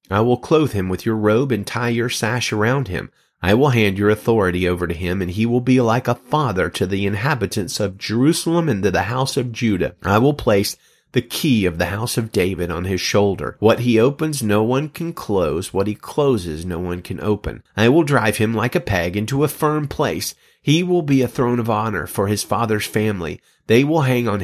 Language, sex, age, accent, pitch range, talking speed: English, male, 30-49, American, 95-125 Hz, 225 wpm